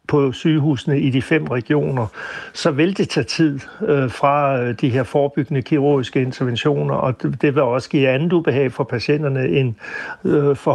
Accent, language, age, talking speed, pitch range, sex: native, Danish, 60-79, 180 wpm, 130-155 Hz, male